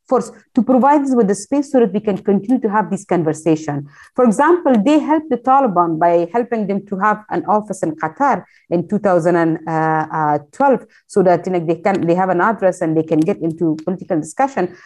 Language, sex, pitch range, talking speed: English, female, 190-245 Hz, 200 wpm